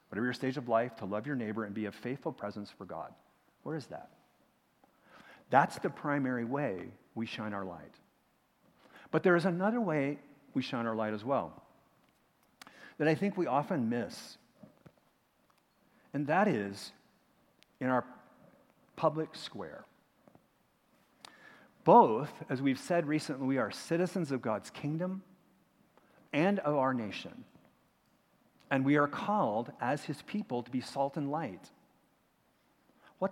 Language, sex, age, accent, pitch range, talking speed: English, male, 50-69, American, 125-185 Hz, 140 wpm